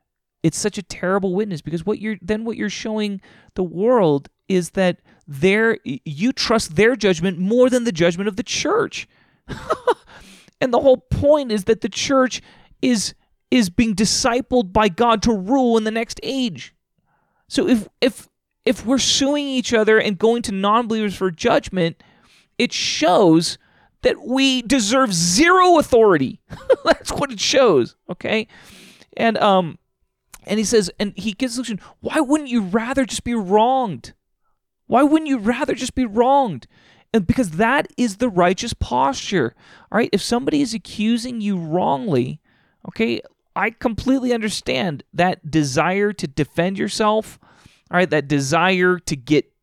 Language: English